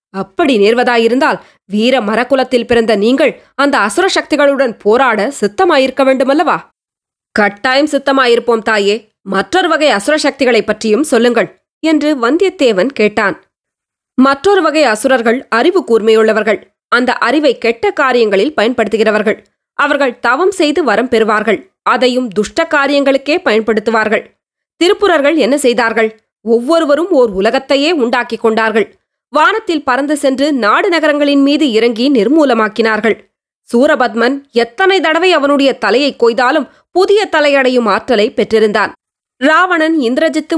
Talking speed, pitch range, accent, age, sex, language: 105 wpm, 225-300 Hz, native, 20-39, female, Tamil